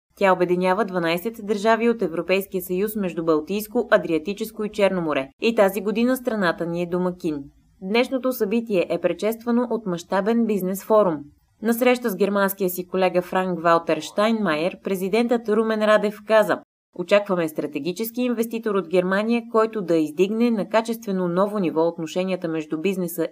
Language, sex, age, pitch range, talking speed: Bulgarian, female, 20-39, 175-220 Hz, 140 wpm